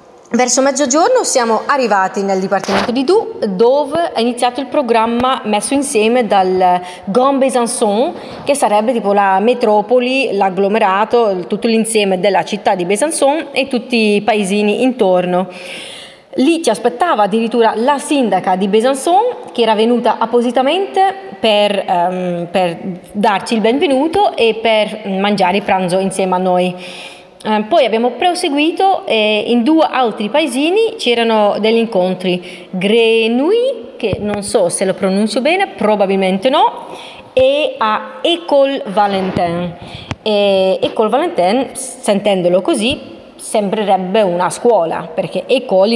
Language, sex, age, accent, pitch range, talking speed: Italian, female, 20-39, native, 195-265 Hz, 125 wpm